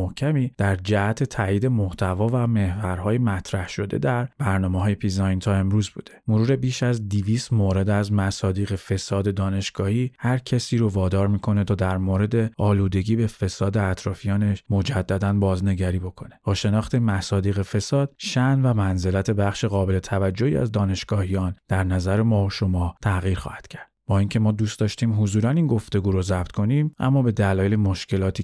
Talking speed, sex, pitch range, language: 150 wpm, male, 95-115 Hz, Persian